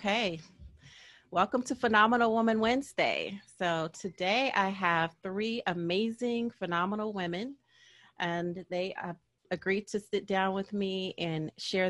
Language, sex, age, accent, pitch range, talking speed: English, female, 30-49, American, 165-195 Hz, 125 wpm